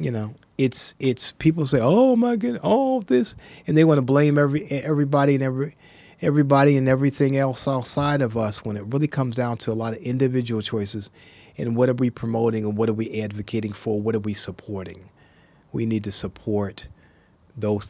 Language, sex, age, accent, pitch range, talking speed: English, male, 30-49, American, 100-130 Hz, 200 wpm